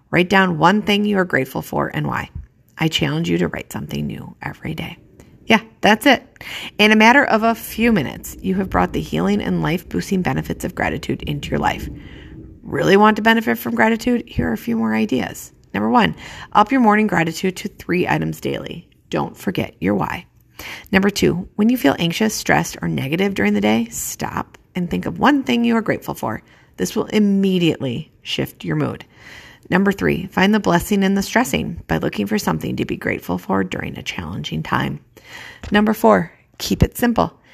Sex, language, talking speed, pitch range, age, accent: female, English, 195 wpm, 135-215 Hz, 40-59, American